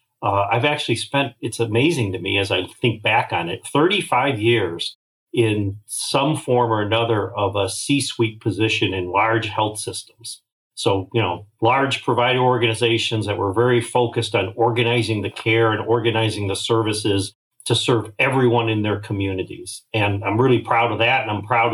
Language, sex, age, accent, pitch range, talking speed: English, male, 50-69, American, 105-125 Hz, 170 wpm